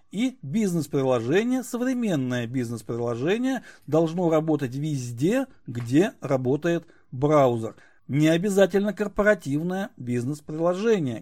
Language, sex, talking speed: Russian, male, 75 wpm